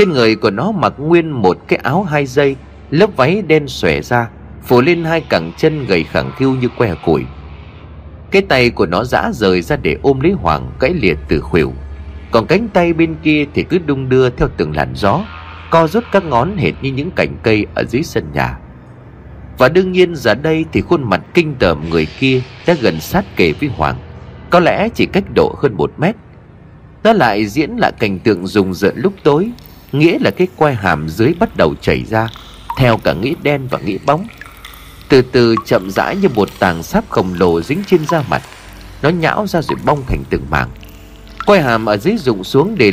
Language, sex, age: Vietnamese, male, 30-49